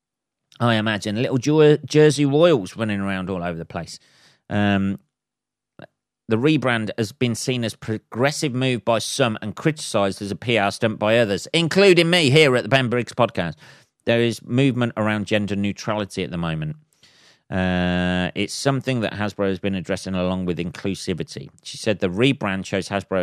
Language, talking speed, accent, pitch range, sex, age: English, 170 wpm, British, 95-135 Hz, male, 40-59